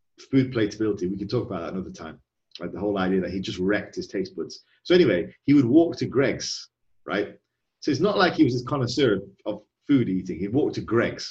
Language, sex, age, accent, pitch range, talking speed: English, male, 30-49, British, 100-130 Hz, 230 wpm